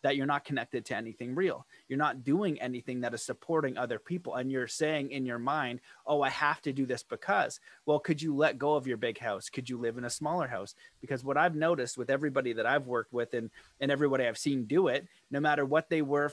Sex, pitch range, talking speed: male, 125-145 Hz, 245 wpm